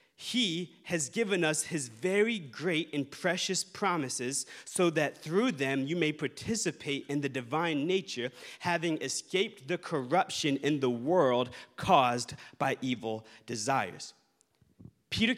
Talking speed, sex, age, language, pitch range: 130 wpm, male, 30-49, English, 140-180 Hz